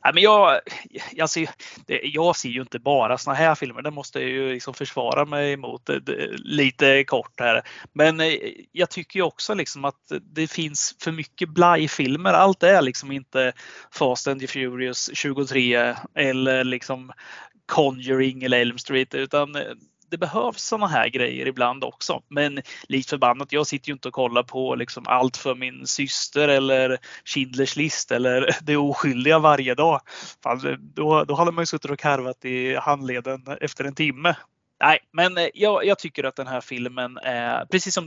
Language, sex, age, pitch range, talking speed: Swedish, male, 30-49, 130-150 Hz, 170 wpm